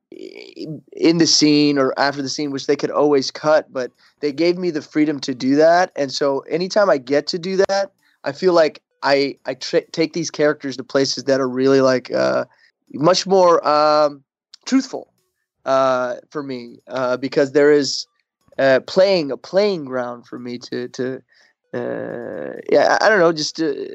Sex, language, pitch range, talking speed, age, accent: male, English, 135-165 Hz, 180 wpm, 20-39, American